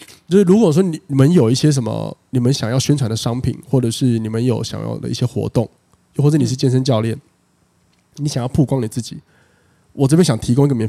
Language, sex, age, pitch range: Chinese, male, 20-39, 115-140 Hz